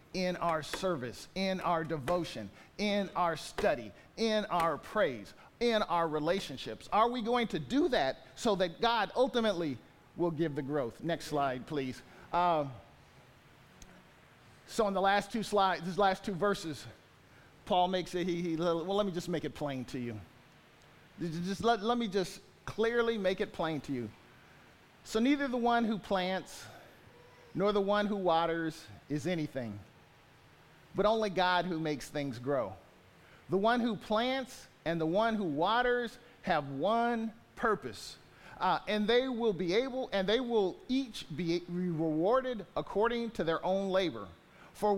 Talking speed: 155 wpm